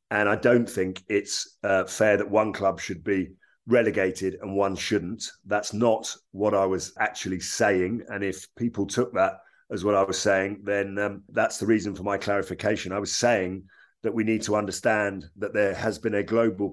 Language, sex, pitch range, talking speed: English, male, 95-110 Hz, 195 wpm